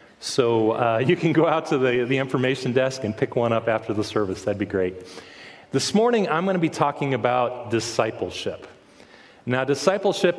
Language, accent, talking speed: English, American, 185 wpm